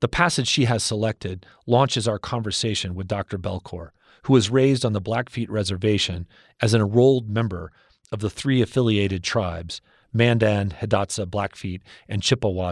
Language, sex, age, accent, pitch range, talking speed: English, male, 40-59, American, 100-125 Hz, 150 wpm